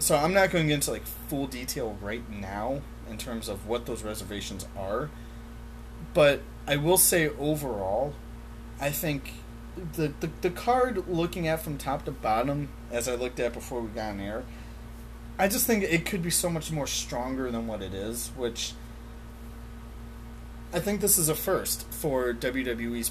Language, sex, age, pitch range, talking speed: English, male, 30-49, 110-155 Hz, 175 wpm